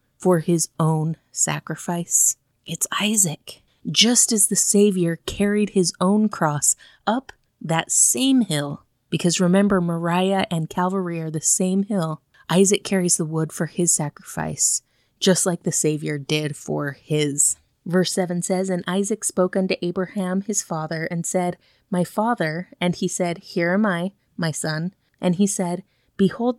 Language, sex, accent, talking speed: English, female, American, 150 wpm